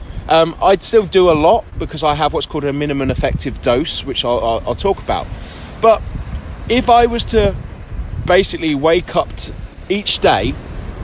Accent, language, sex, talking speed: British, English, male, 170 wpm